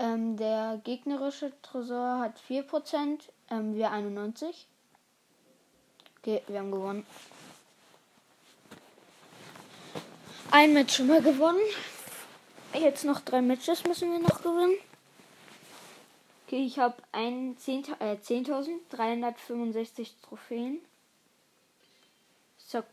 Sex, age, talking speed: female, 20-39, 90 wpm